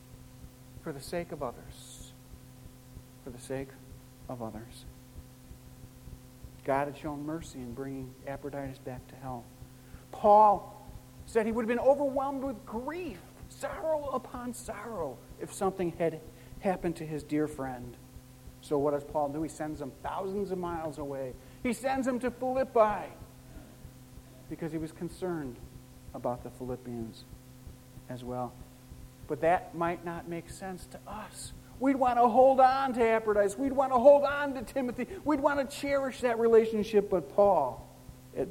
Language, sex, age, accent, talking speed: English, male, 50-69, American, 150 wpm